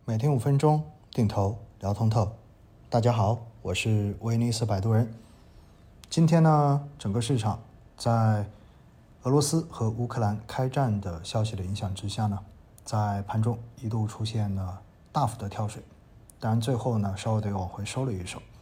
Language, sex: Chinese, male